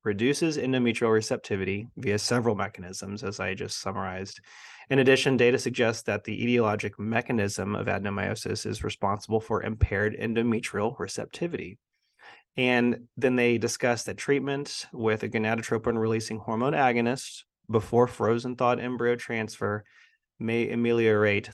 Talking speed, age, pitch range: 125 wpm, 30-49, 105-120 Hz